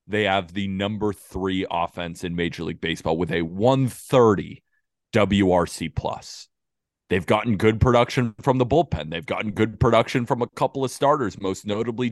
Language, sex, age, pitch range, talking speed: English, male, 30-49, 95-125 Hz, 165 wpm